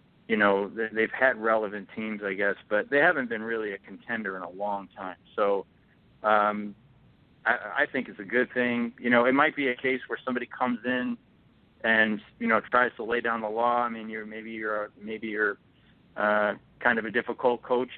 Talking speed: 205 wpm